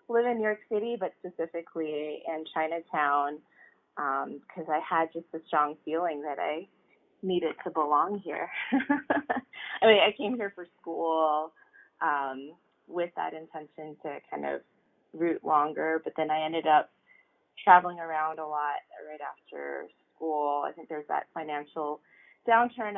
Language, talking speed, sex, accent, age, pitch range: English, 150 wpm, female, American, 20-39, 150-170 Hz